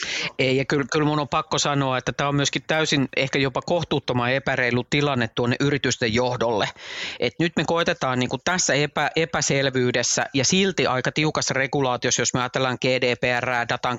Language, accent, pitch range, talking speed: Finnish, native, 130-160 Hz, 165 wpm